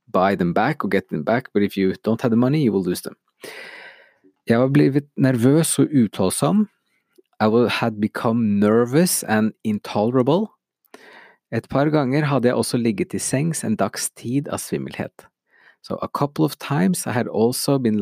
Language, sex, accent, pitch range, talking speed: English, male, Norwegian, 105-150 Hz, 180 wpm